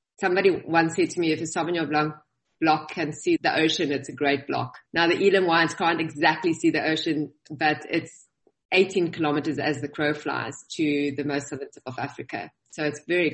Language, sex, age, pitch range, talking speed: English, female, 20-39, 145-165 Hz, 200 wpm